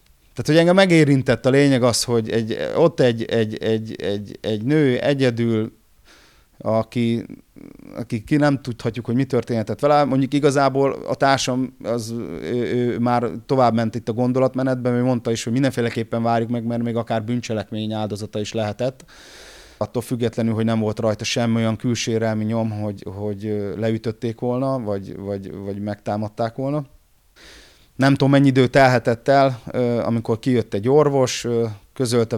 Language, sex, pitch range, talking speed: Hungarian, male, 110-130 Hz, 150 wpm